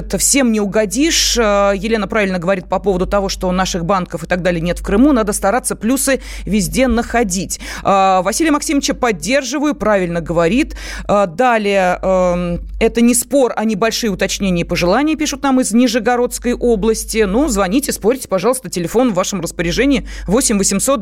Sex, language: female, Russian